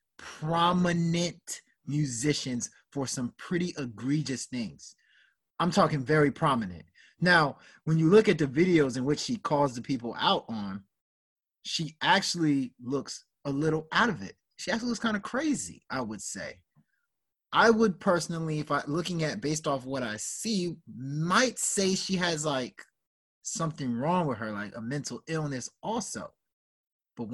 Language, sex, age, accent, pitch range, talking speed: English, male, 30-49, American, 125-165 Hz, 155 wpm